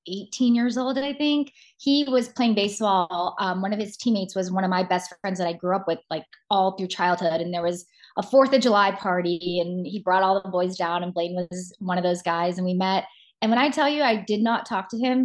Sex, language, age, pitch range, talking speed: female, English, 20-39, 190-255 Hz, 255 wpm